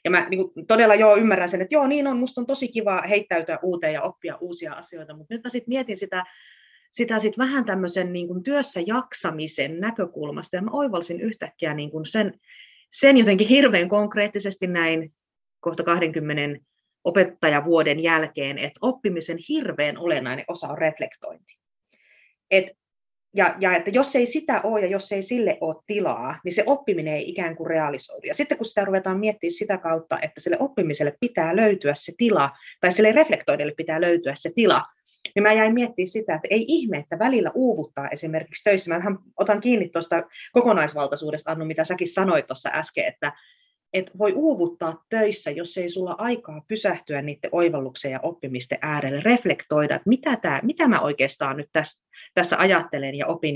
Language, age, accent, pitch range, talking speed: Finnish, 30-49, native, 160-225 Hz, 170 wpm